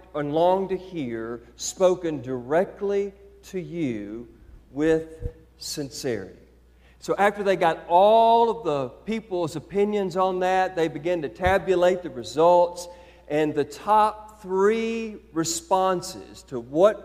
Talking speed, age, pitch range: 120 wpm, 50-69, 130-195 Hz